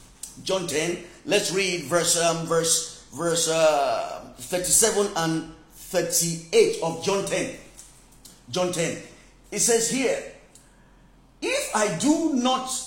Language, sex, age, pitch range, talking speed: English, male, 40-59, 195-275 Hz, 120 wpm